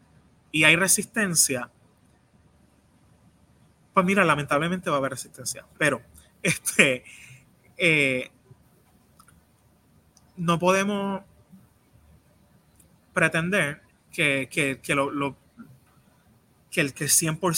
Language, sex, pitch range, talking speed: Spanish, male, 140-175 Hz, 80 wpm